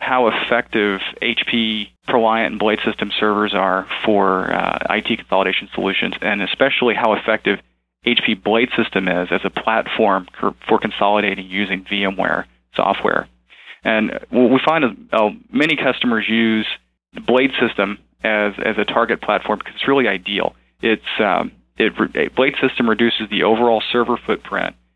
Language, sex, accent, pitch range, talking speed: English, male, American, 95-115 Hz, 145 wpm